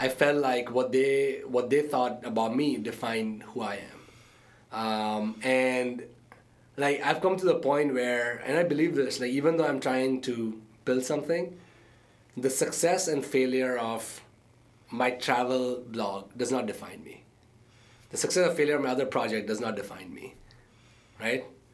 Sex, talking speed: male, 165 wpm